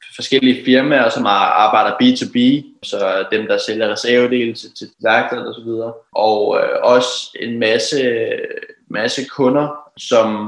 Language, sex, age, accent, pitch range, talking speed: Danish, male, 20-39, native, 120-150 Hz, 130 wpm